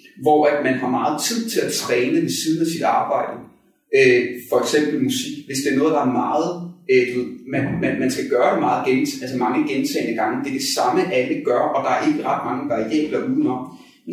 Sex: male